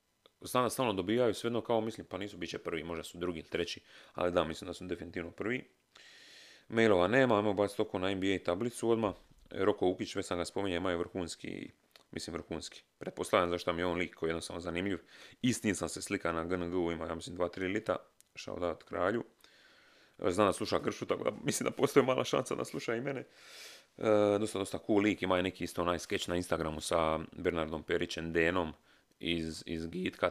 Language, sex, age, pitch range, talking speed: Croatian, male, 30-49, 85-105 Hz, 190 wpm